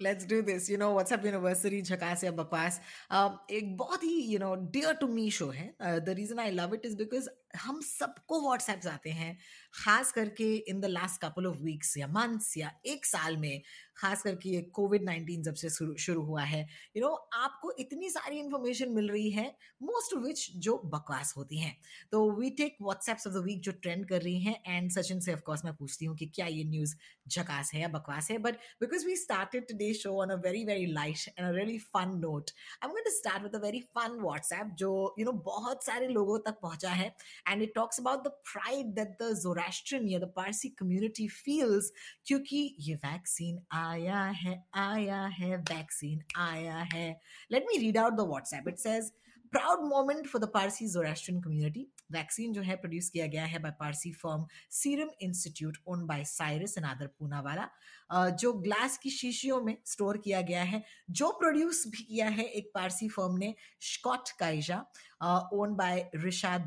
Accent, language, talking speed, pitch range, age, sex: native, Hindi, 160 wpm, 170-225 Hz, 20-39, female